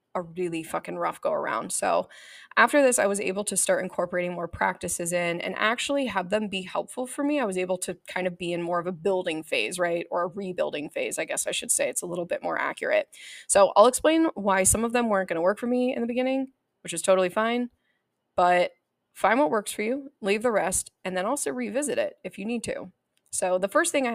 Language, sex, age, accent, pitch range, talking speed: English, female, 20-39, American, 175-215 Hz, 245 wpm